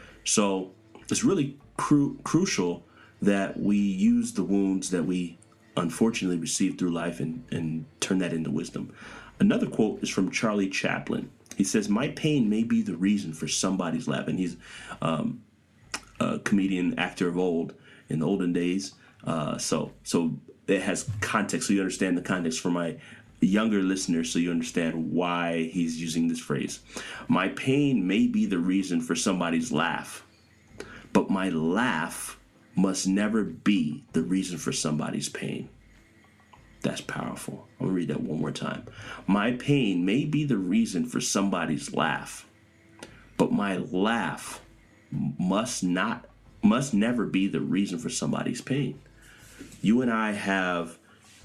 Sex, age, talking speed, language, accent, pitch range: male, 30-49, 150 wpm, English, American, 85-115 Hz